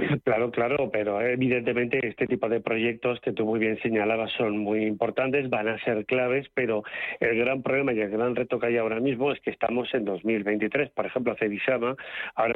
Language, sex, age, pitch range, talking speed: Spanish, male, 40-59, 115-140 Hz, 195 wpm